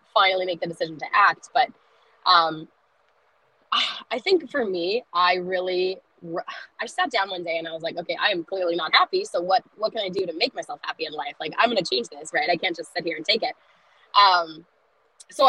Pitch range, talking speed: 165-205 Hz, 220 wpm